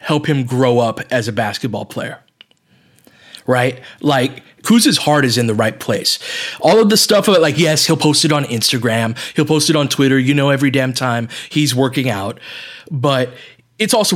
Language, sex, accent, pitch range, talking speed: English, male, American, 125-155 Hz, 195 wpm